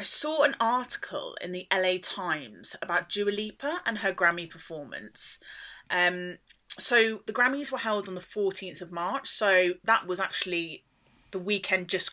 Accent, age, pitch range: British, 30-49, 170-215 Hz